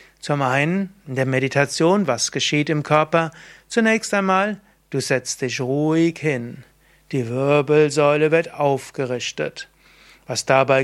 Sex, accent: male, German